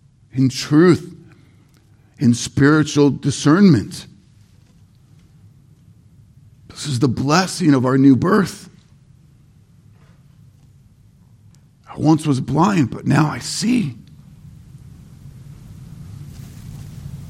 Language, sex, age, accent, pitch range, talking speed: English, male, 50-69, American, 105-135 Hz, 75 wpm